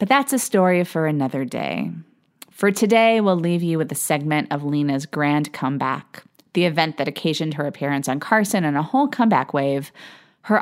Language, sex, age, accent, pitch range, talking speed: English, female, 30-49, American, 150-200 Hz, 185 wpm